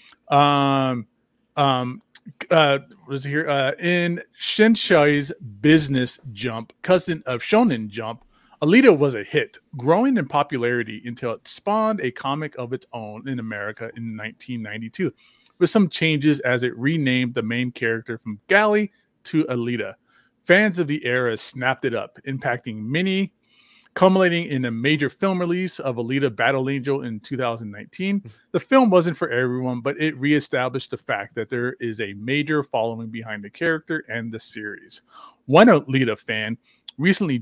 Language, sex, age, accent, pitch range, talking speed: English, male, 30-49, American, 120-170 Hz, 150 wpm